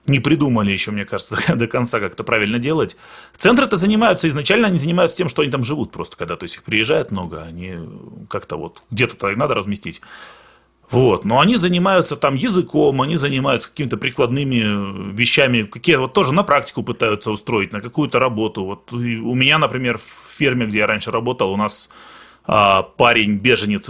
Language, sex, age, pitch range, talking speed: Russian, male, 30-49, 105-145 Hz, 170 wpm